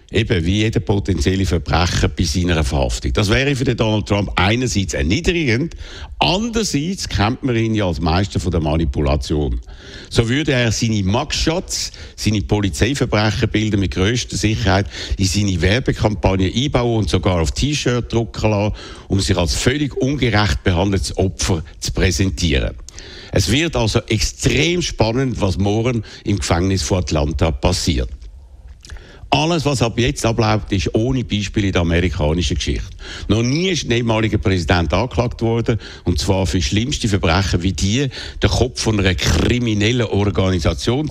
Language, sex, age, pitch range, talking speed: German, male, 60-79, 90-115 Hz, 145 wpm